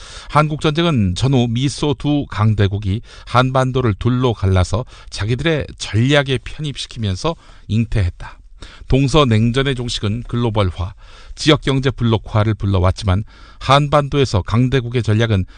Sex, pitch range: male, 95-135 Hz